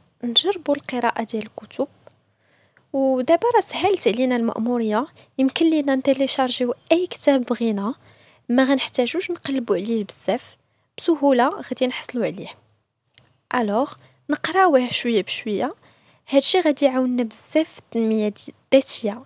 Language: Arabic